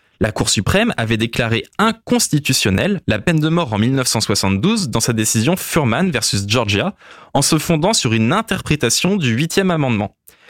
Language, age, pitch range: French, 20-39, 110-165 Hz